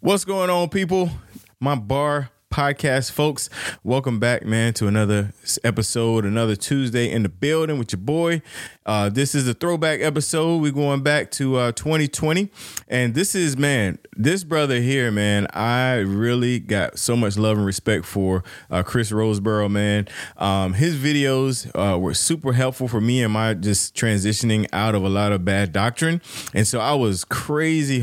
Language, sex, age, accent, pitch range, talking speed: English, male, 20-39, American, 100-135 Hz, 170 wpm